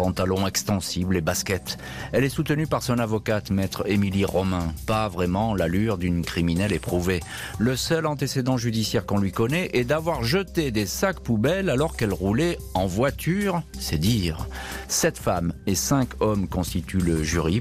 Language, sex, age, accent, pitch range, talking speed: French, male, 40-59, French, 90-120 Hz, 160 wpm